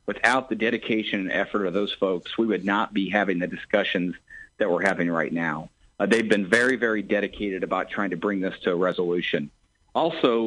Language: English